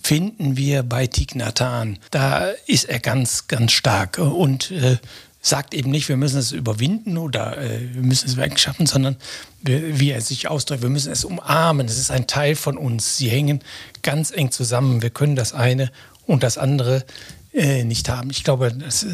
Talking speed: 180 wpm